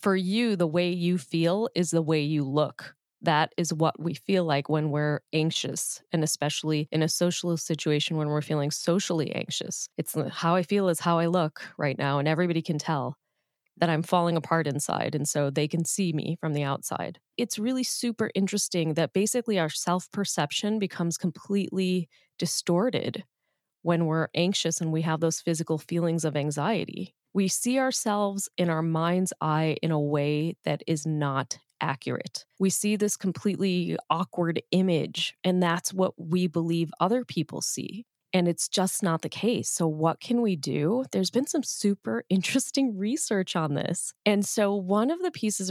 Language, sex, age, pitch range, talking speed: English, female, 30-49, 160-200 Hz, 175 wpm